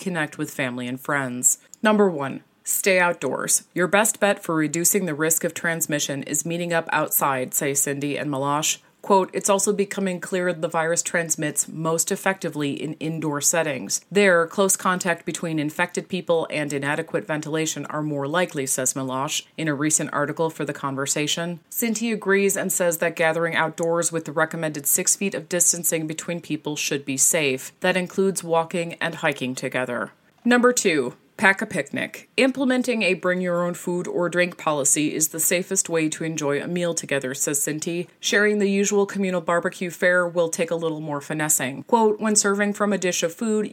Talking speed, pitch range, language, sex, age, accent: 175 wpm, 150-185 Hz, English, female, 30-49, American